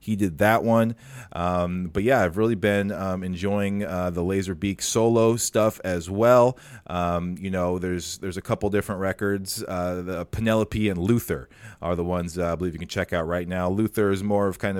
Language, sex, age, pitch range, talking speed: English, male, 30-49, 95-115 Hz, 210 wpm